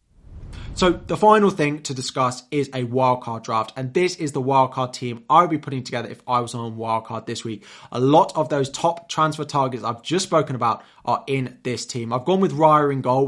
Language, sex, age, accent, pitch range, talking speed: English, male, 20-39, British, 125-150 Hz, 235 wpm